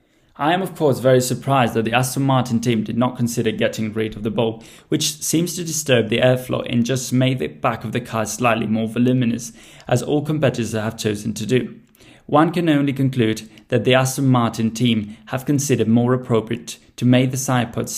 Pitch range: 115-135 Hz